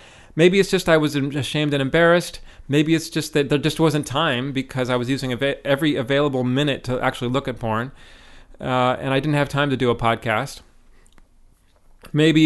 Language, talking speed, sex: English, 190 wpm, male